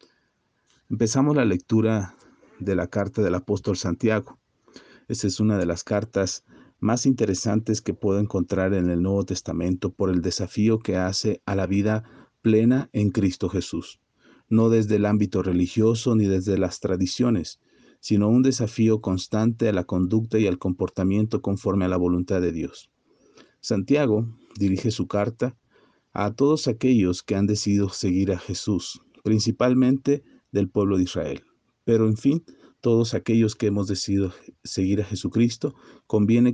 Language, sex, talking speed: Spanish, male, 150 wpm